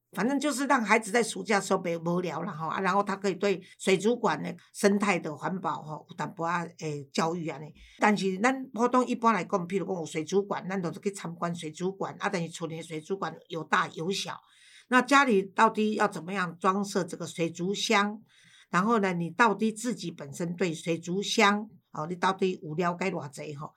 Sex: female